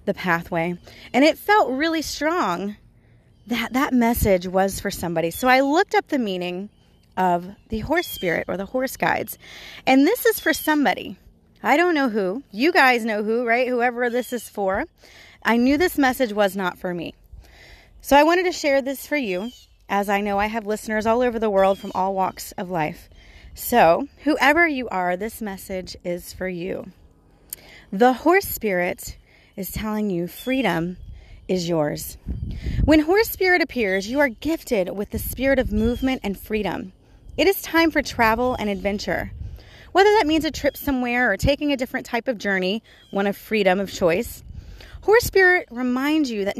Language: English